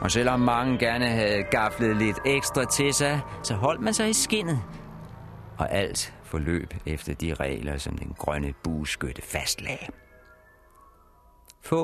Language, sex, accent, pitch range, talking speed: Danish, male, native, 85-135 Hz, 140 wpm